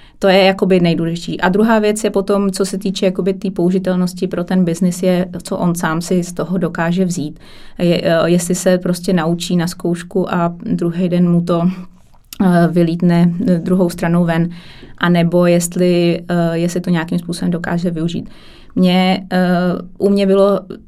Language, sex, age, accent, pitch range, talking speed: Czech, female, 20-39, native, 170-185 Hz, 150 wpm